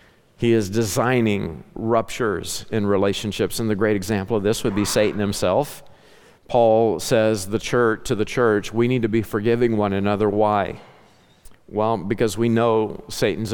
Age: 50-69